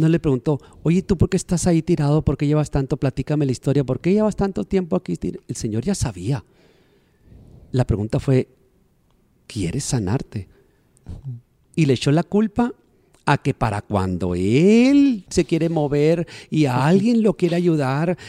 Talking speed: 165 wpm